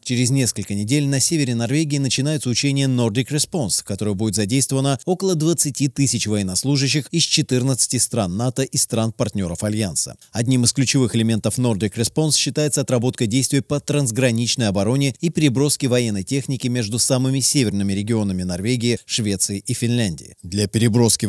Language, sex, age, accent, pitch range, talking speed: Russian, male, 30-49, native, 110-135 Hz, 145 wpm